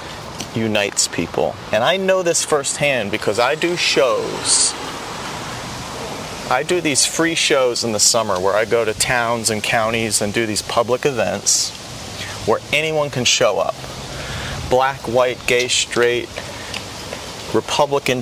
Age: 30-49